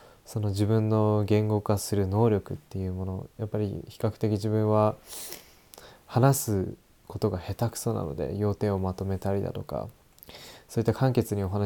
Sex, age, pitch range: male, 20-39, 100-115 Hz